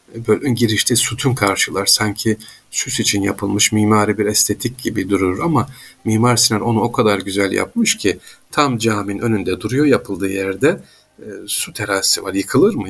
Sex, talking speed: male, 160 wpm